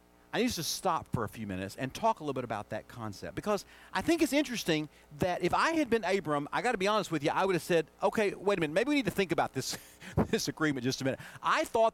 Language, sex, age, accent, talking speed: English, male, 40-59, American, 280 wpm